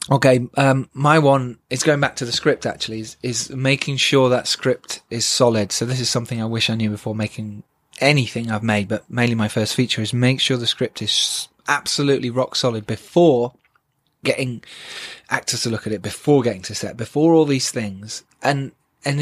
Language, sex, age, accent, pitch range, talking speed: English, male, 20-39, British, 125-170 Hz, 195 wpm